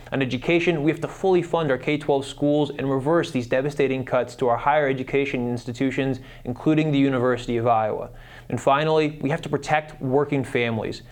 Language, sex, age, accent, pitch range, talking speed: English, male, 20-39, American, 125-150 Hz, 180 wpm